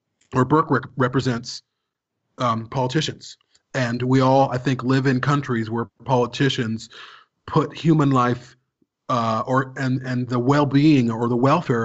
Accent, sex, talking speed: American, male, 140 wpm